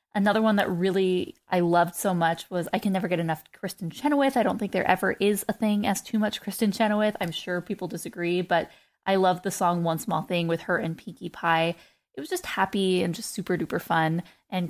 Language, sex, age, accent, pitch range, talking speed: English, female, 20-39, American, 165-205 Hz, 230 wpm